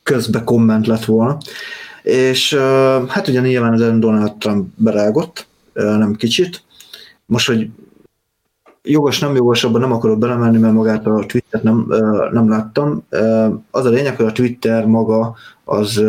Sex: male